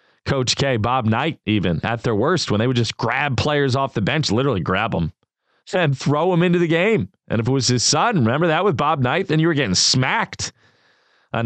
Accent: American